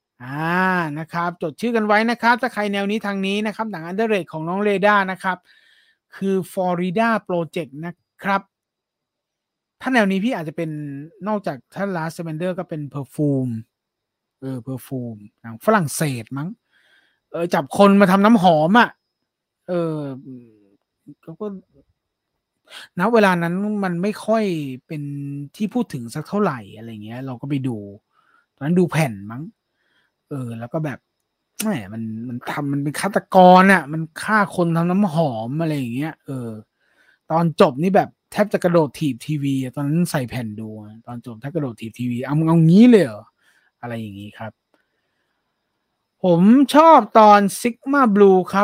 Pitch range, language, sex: 135-200 Hz, English, male